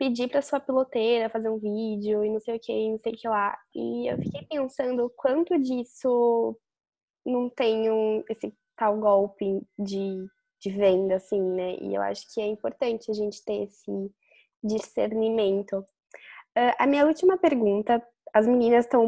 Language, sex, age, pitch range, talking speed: English, female, 10-29, 210-255 Hz, 170 wpm